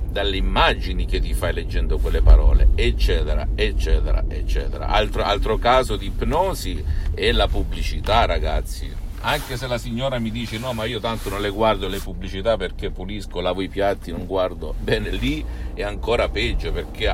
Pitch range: 80-105 Hz